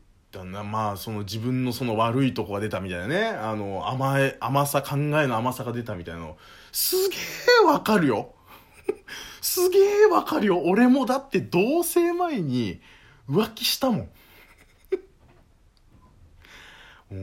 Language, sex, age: Japanese, male, 20-39